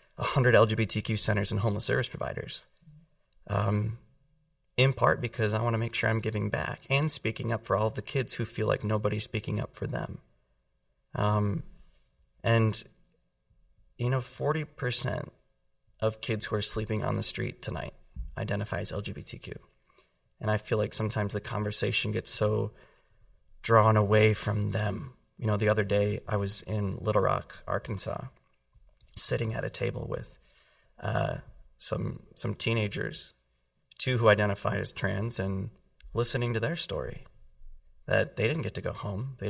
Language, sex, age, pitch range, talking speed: English, male, 30-49, 100-115 Hz, 155 wpm